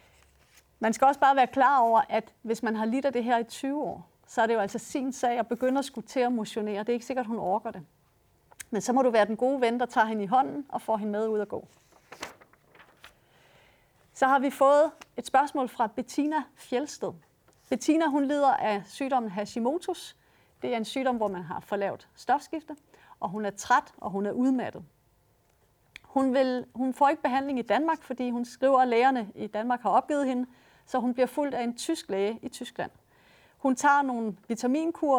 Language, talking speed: Danish, 210 wpm